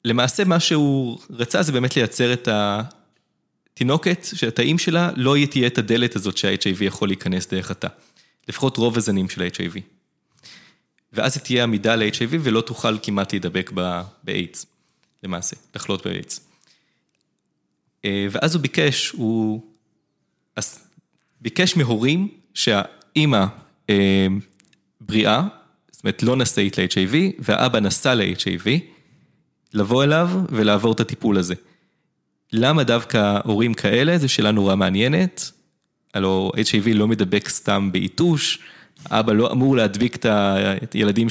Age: 20-39